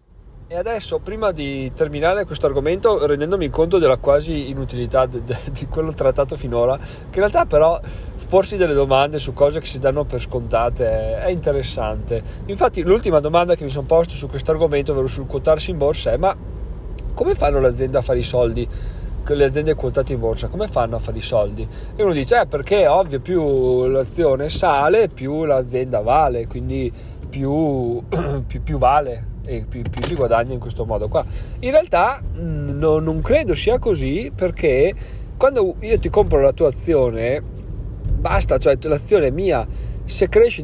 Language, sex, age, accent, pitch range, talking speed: Italian, male, 30-49, native, 120-160 Hz, 170 wpm